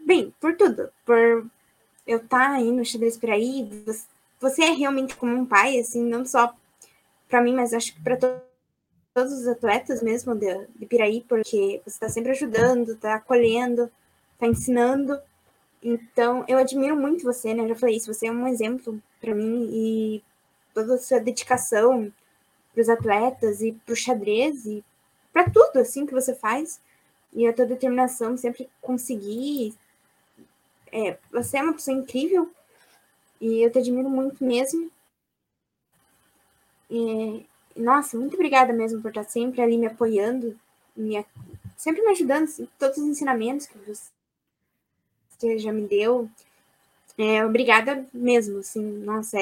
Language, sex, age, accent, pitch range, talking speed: Portuguese, female, 10-29, Brazilian, 225-260 Hz, 150 wpm